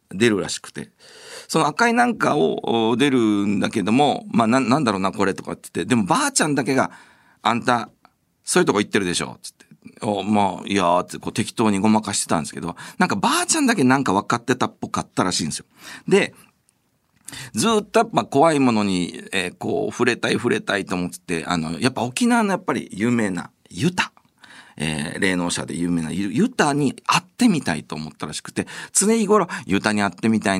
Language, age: Japanese, 50-69